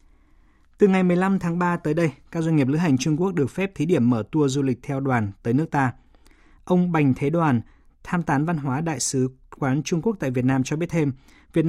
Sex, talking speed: male, 240 wpm